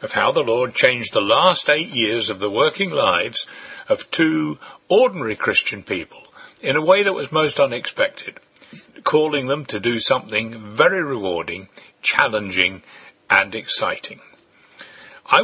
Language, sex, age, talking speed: English, male, 60-79, 140 wpm